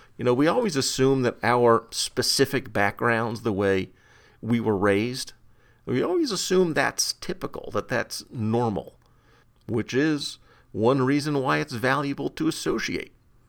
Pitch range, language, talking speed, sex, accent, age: 110-130 Hz, English, 140 wpm, male, American, 50-69